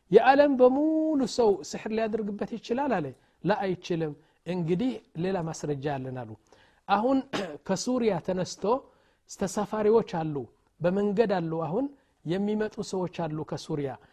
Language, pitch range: Amharic, 165-230 Hz